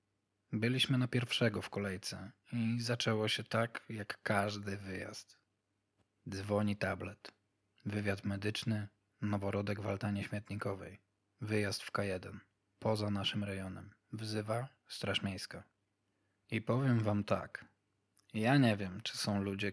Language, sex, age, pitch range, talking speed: Polish, male, 20-39, 100-110 Hz, 115 wpm